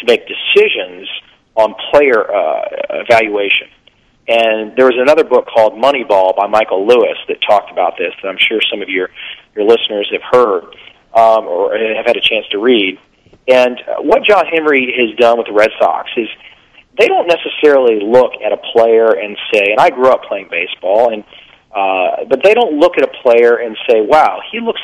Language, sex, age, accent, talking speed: English, male, 40-59, American, 190 wpm